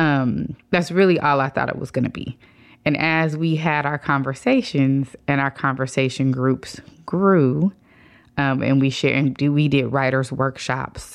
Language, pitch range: English, 125-140 Hz